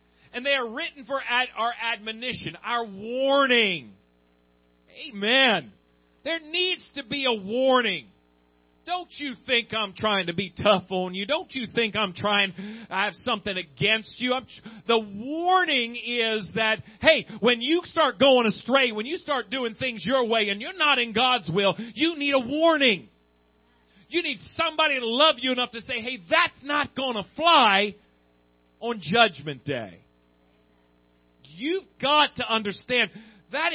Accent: American